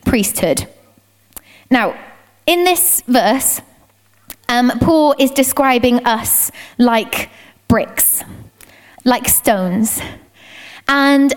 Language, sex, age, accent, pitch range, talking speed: English, female, 20-39, British, 235-295 Hz, 80 wpm